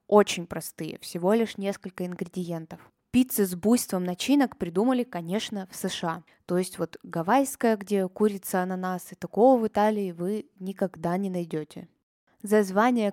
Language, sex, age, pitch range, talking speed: Russian, female, 20-39, 180-225 Hz, 135 wpm